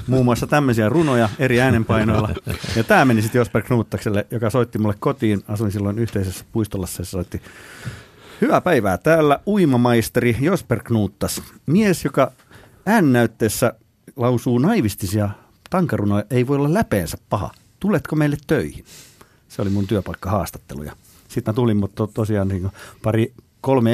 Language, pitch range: Finnish, 100-125 Hz